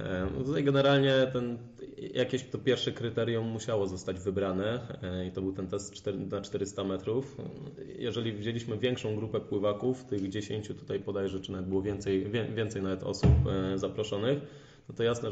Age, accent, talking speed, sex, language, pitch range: 20-39, native, 155 wpm, male, Polish, 100-115 Hz